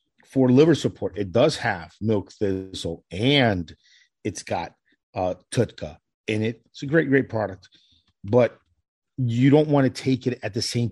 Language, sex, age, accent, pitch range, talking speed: English, male, 50-69, American, 100-125 Hz, 165 wpm